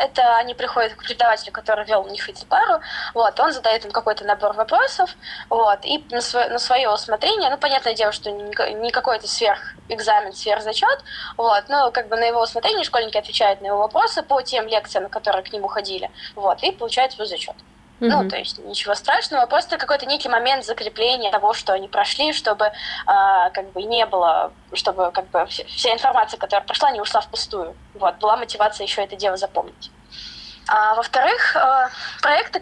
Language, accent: Russian, native